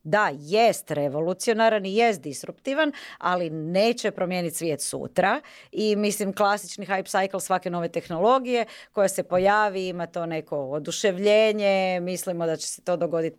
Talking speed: 145 wpm